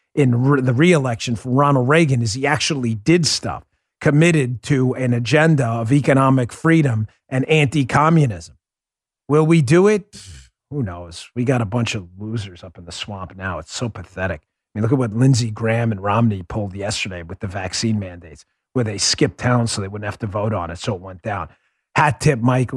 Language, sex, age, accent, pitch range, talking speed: English, male, 40-59, American, 100-150 Hz, 195 wpm